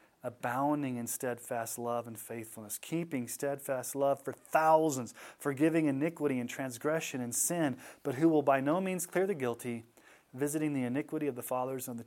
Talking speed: 170 wpm